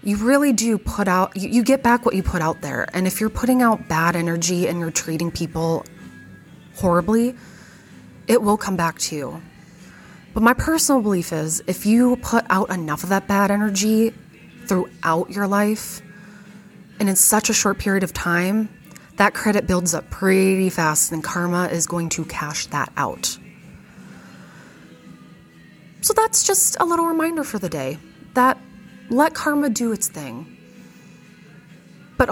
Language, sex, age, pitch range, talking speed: English, female, 20-39, 165-220 Hz, 160 wpm